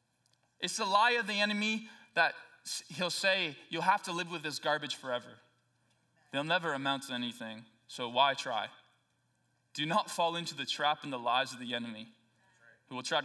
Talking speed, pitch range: 180 wpm, 145-230 Hz